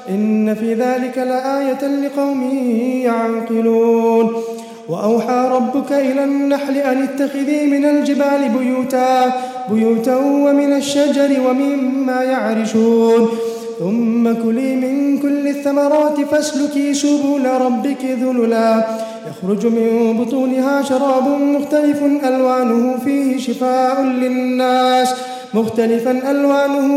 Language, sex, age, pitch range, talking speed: English, male, 20-39, 230-275 Hz, 90 wpm